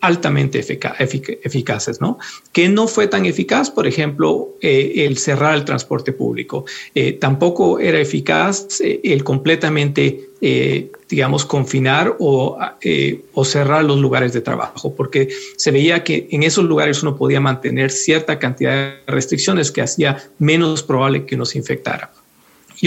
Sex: male